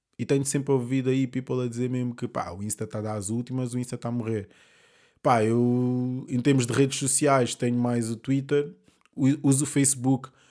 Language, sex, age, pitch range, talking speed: Portuguese, male, 20-39, 120-140 Hz, 210 wpm